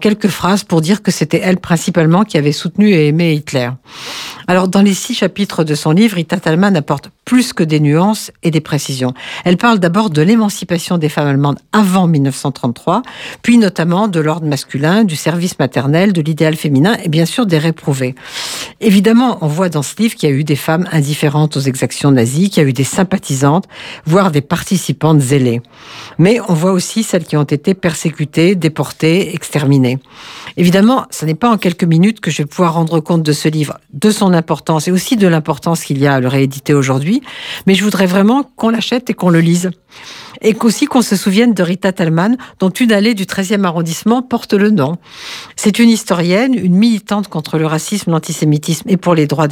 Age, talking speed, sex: 60-79, 200 wpm, female